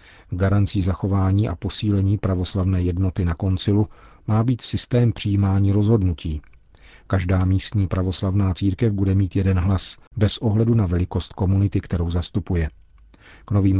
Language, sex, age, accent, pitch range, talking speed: Czech, male, 40-59, native, 90-105 Hz, 130 wpm